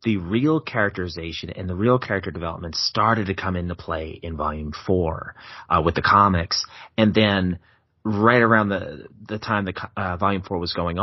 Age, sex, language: 30-49, male, English